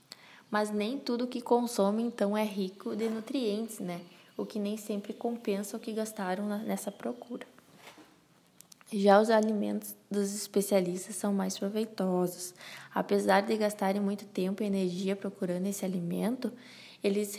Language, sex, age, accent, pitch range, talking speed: Portuguese, female, 20-39, Brazilian, 190-215 Hz, 140 wpm